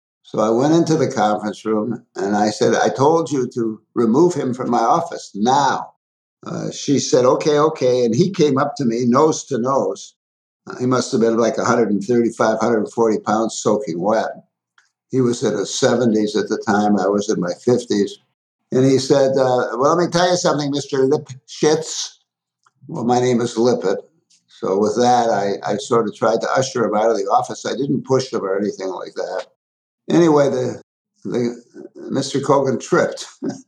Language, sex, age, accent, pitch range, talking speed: English, male, 60-79, American, 105-135 Hz, 185 wpm